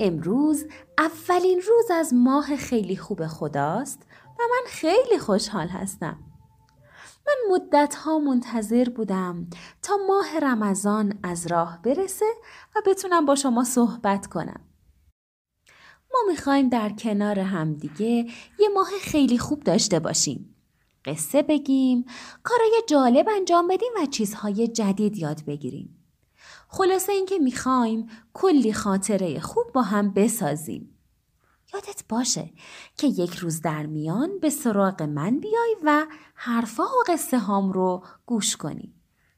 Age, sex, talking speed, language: 30-49, female, 120 wpm, Persian